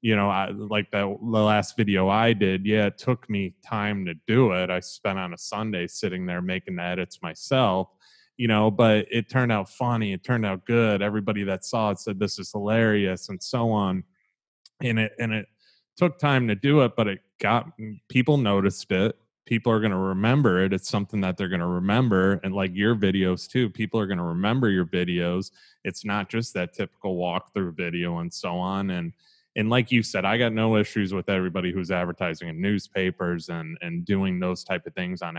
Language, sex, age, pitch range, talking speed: English, male, 20-39, 90-110 Hz, 205 wpm